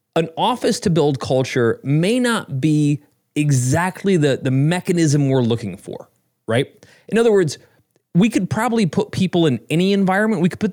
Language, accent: English, American